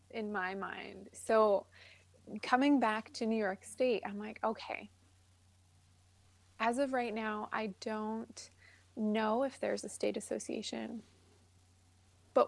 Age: 20-39